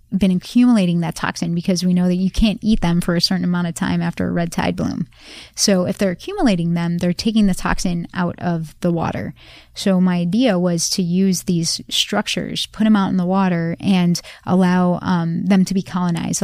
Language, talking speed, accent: English, 210 wpm, American